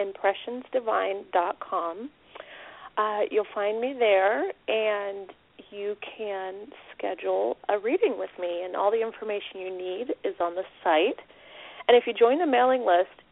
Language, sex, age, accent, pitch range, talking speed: English, female, 30-49, American, 190-240 Hz, 135 wpm